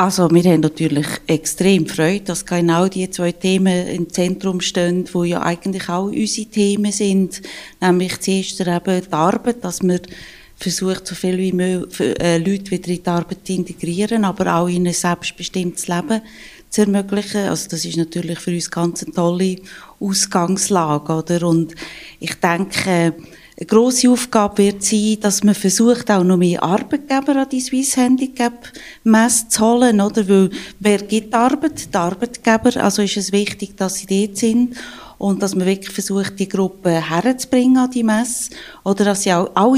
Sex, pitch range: female, 175-215 Hz